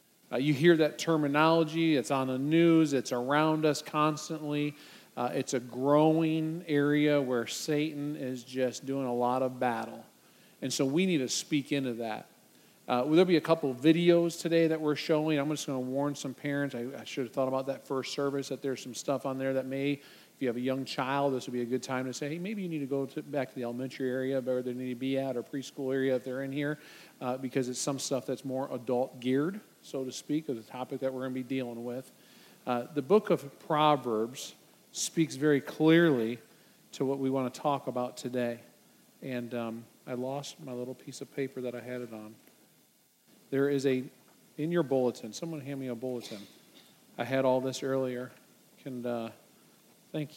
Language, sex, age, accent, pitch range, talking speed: English, male, 40-59, American, 125-150 Hz, 215 wpm